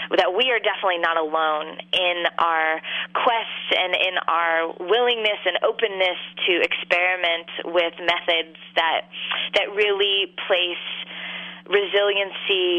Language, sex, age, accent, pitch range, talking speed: English, female, 20-39, American, 170-200 Hz, 115 wpm